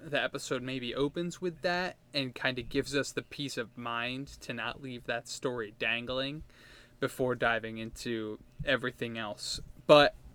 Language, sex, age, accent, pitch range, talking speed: English, male, 20-39, American, 125-155 Hz, 155 wpm